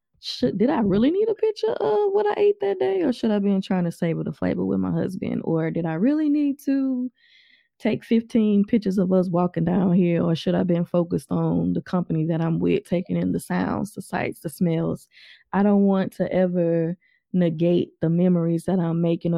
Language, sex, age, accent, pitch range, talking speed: English, female, 20-39, American, 165-185 Hz, 215 wpm